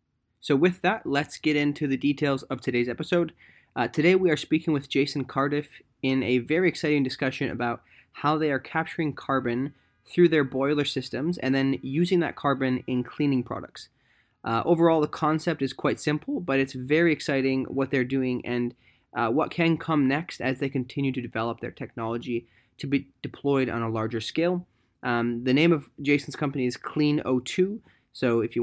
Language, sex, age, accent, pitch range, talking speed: English, male, 20-39, American, 120-145 Hz, 185 wpm